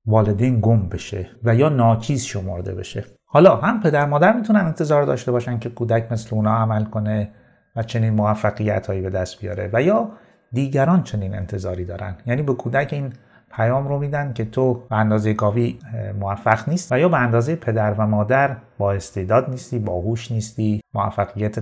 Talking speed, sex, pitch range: 170 wpm, male, 105-130 Hz